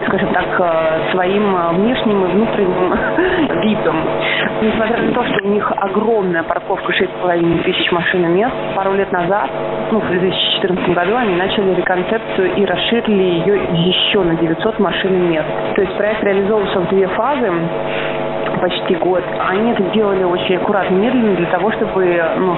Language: Russian